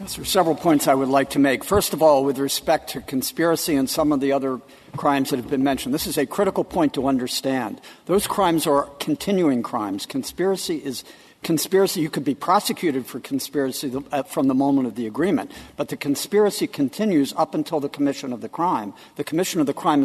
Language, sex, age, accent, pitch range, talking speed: English, male, 60-79, American, 140-185 Hz, 215 wpm